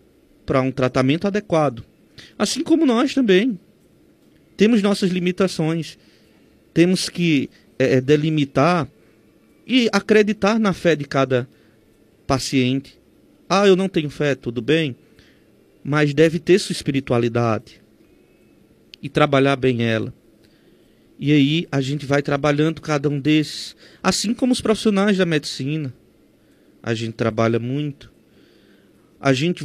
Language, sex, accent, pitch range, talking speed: Portuguese, male, Brazilian, 135-205 Hz, 115 wpm